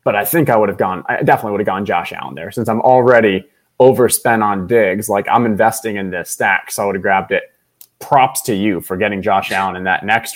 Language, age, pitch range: English, 20-39, 105-130 Hz